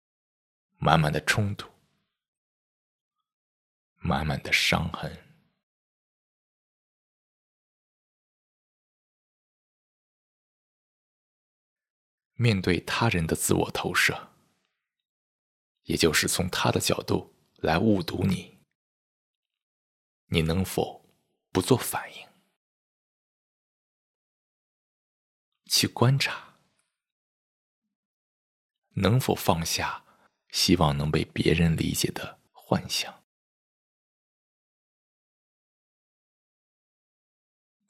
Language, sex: Chinese, male